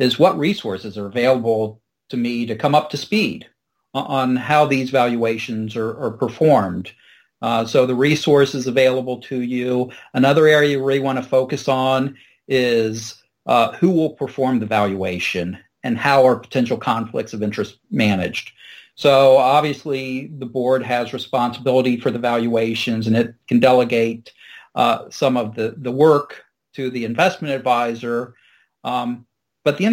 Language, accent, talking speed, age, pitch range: English, American, 150 wpm, 40-59, 115-140 Hz